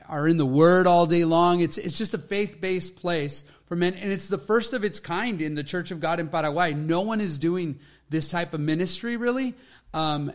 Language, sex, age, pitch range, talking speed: English, male, 30-49, 150-175 Hz, 230 wpm